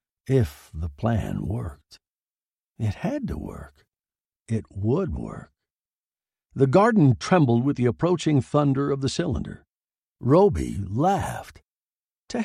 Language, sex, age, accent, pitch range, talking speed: English, male, 60-79, American, 100-150 Hz, 115 wpm